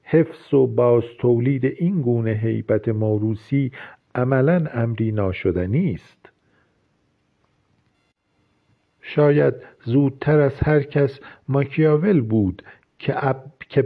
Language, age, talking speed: Persian, 50-69, 80 wpm